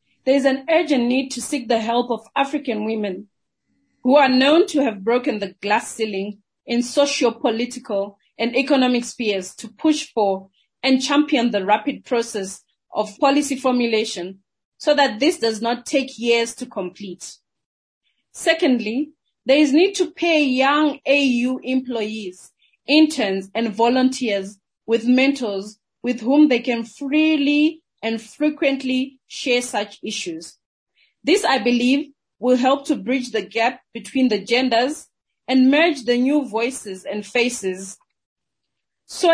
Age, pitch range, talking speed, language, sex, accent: 30-49, 215-275 Hz, 135 wpm, English, female, South African